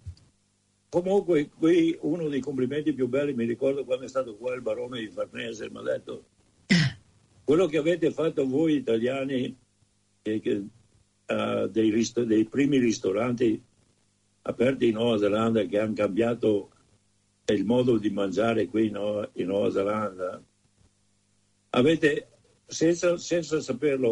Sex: male